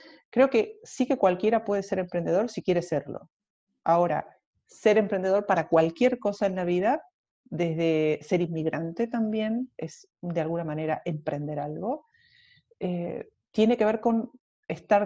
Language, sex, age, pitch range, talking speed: Spanish, female, 40-59, 170-235 Hz, 145 wpm